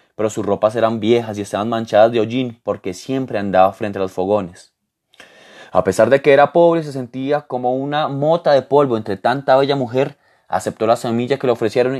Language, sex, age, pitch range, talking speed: Spanish, male, 20-39, 105-130 Hz, 200 wpm